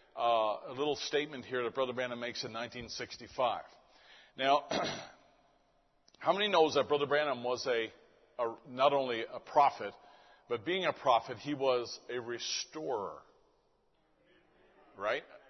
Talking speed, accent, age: 130 wpm, American, 50-69